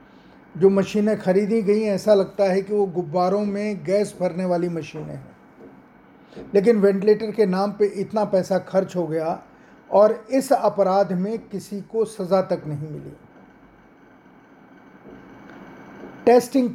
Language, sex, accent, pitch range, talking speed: Hindi, male, native, 185-210 Hz, 135 wpm